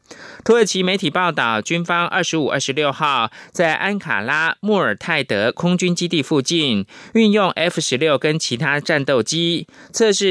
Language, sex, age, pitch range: Chinese, male, 20-39, 140-185 Hz